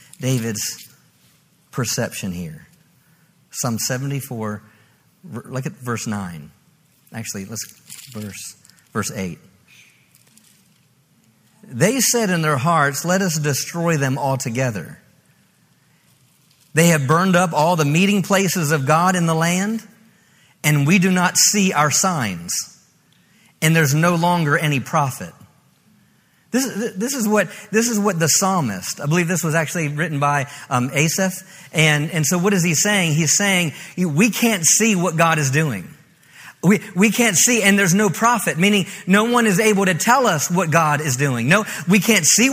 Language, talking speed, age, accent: English, 150 wpm, 50-69, American